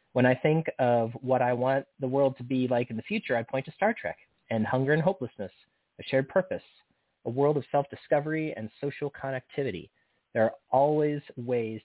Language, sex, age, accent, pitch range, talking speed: English, male, 30-49, American, 110-140 Hz, 190 wpm